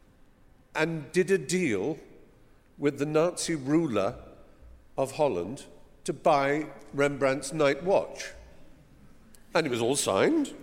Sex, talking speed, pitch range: male, 115 wpm, 130-195 Hz